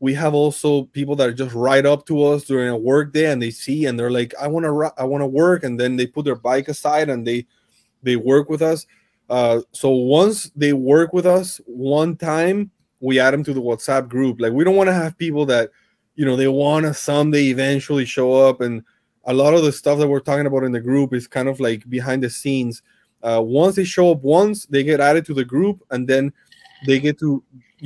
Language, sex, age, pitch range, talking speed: English, male, 20-39, 125-150 Hz, 235 wpm